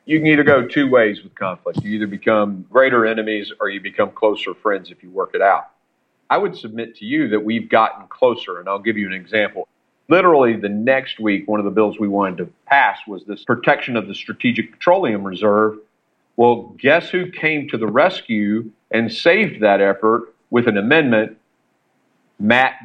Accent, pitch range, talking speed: American, 105-135 Hz, 190 wpm